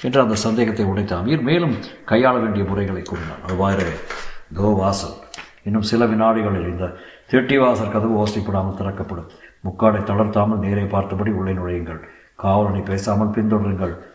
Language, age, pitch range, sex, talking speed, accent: Tamil, 60-79, 95-110 Hz, male, 125 wpm, native